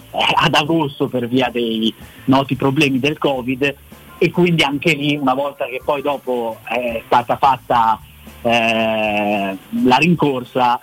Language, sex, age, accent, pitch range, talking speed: Italian, male, 30-49, native, 130-165 Hz, 135 wpm